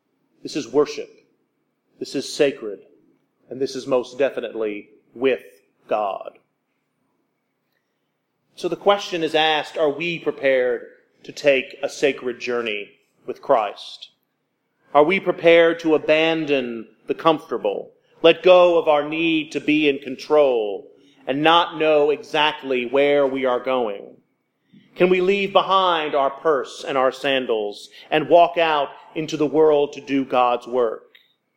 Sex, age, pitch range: male, 40-59, 145-200 Hz